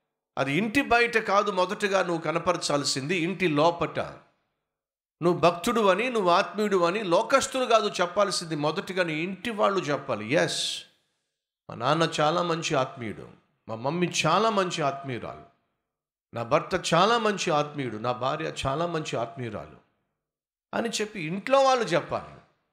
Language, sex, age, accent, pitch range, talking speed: Telugu, male, 50-69, native, 135-195 Hz, 125 wpm